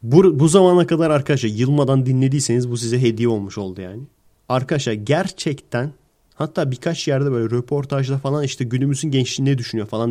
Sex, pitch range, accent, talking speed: male, 120-165 Hz, native, 160 wpm